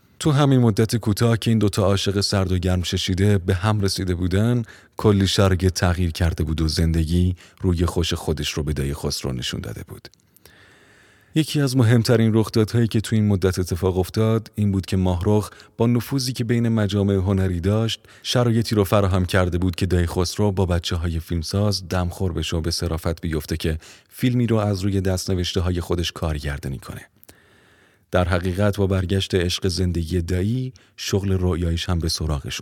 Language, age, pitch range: Persian, 30-49, 85-105 Hz